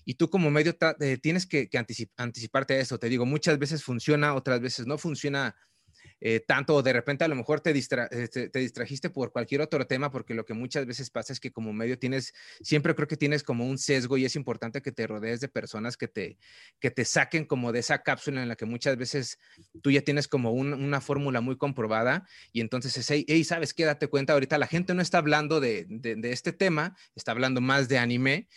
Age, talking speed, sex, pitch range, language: 30-49, 230 wpm, male, 125-150 Hz, Spanish